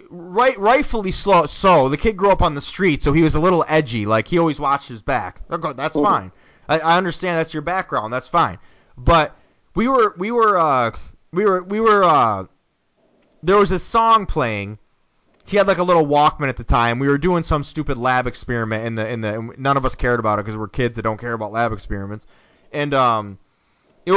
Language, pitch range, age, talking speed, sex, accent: English, 135-215 Hz, 20-39, 220 wpm, male, American